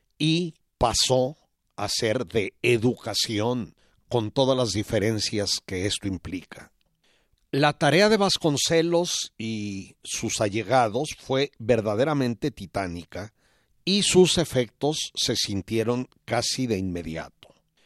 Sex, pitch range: male, 105-145 Hz